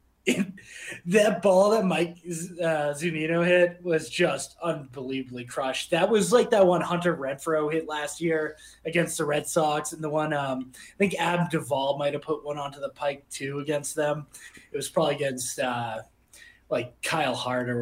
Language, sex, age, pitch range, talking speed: English, male, 20-39, 135-180 Hz, 170 wpm